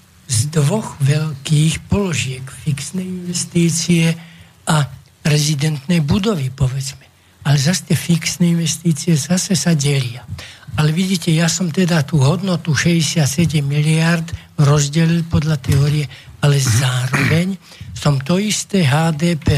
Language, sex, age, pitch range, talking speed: Slovak, male, 60-79, 145-170 Hz, 105 wpm